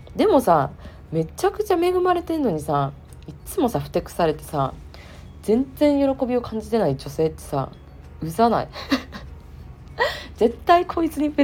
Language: Japanese